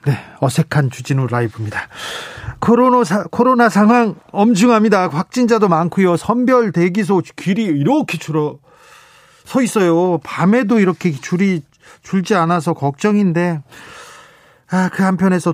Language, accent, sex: Korean, native, male